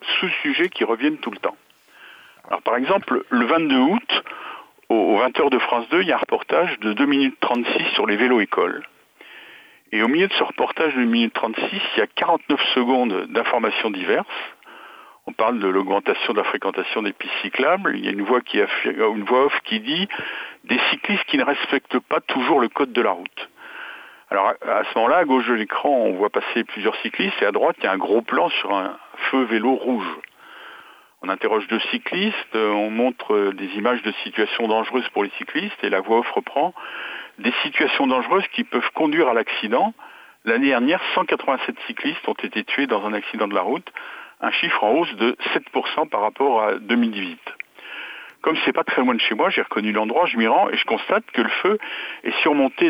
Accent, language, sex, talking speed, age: French, French, male, 200 wpm, 60-79